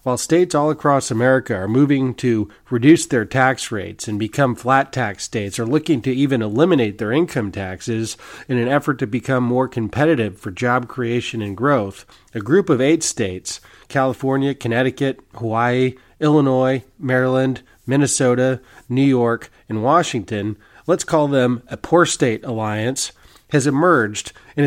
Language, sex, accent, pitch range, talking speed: English, male, American, 115-140 Hz, 150 wpm